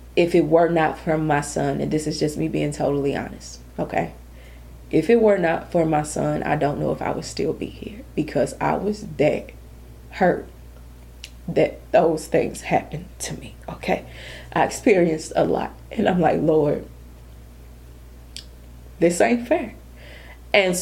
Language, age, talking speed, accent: English, 20-39, 160 wpm, American